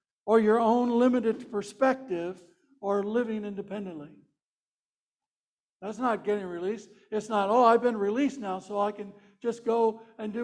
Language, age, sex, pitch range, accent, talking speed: English, 60-79, male, 205-255 Hz, American, 150 wpm